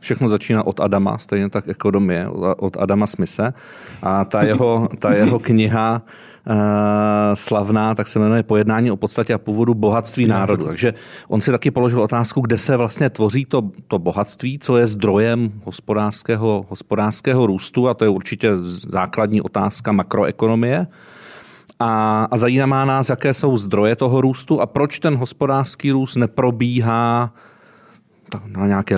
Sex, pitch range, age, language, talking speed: male, 105-125 Hz, 40-59, Czech, 145 wpm